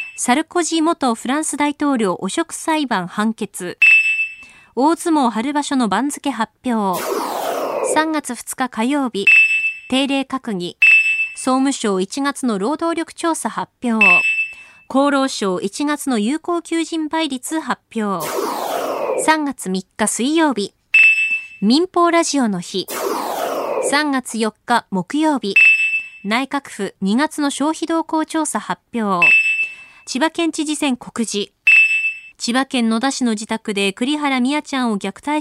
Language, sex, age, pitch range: Japanese, female, 20-39, 195-290 Hz